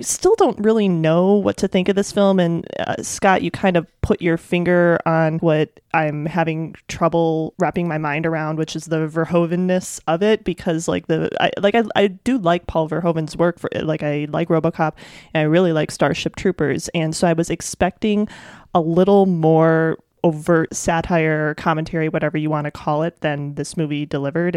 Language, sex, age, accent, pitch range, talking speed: English, male, 30-49, American, 155-185 Hz, 190 wpm